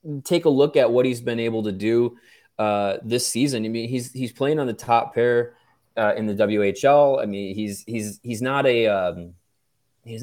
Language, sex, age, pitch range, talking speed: English, male, 20-39, 100-120 Hz, 205 wpm